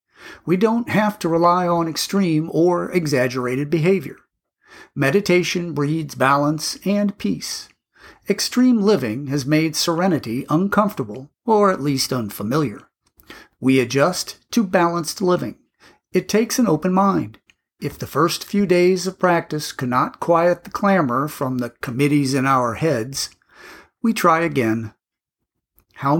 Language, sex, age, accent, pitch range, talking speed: English, male, 50-69, American, 140-190 Hz, 130 wpm